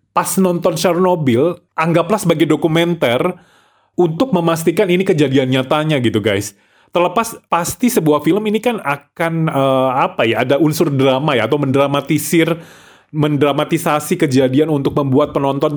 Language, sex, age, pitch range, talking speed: Indonesian, male, 30-49, 130-165 Hz, 130 wpm